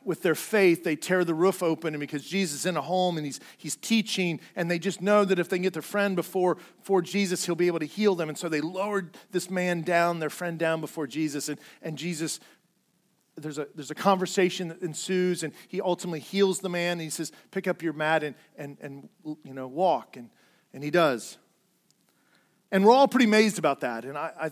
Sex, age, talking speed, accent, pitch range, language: male, 40-59, 230 wpm, American, 165-220 Hz, English